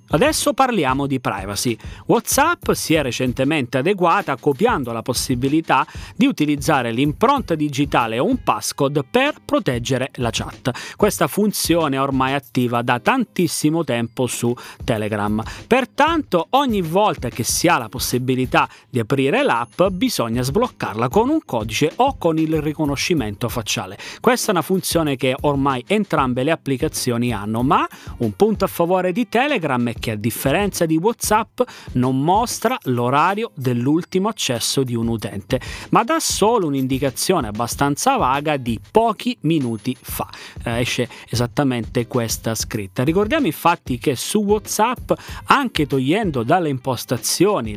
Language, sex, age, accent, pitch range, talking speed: Italian, male, 30-49, native, 120-180 Hz, 135 wpm